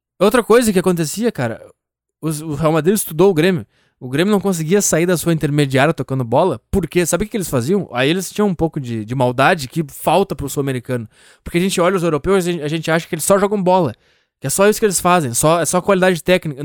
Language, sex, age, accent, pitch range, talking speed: Italian, male, 20-39, Brazilian, 150-195 Hz, 240 wpm